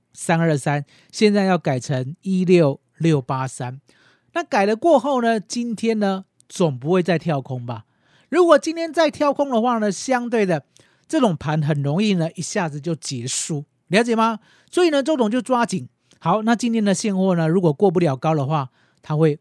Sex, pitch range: male, 150-225 Hz